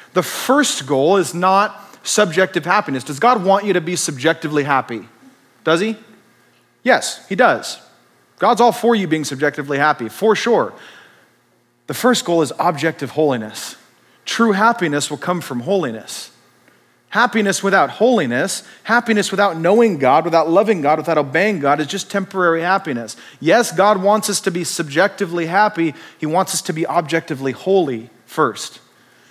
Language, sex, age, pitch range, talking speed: English, male, 30-49, 155-215 Hz, 150 wpm